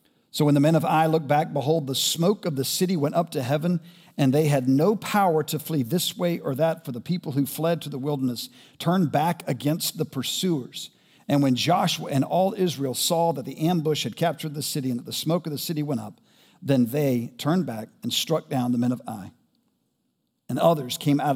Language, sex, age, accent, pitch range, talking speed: English, male, 50-69, American, 130-165 Hz, 225 wpm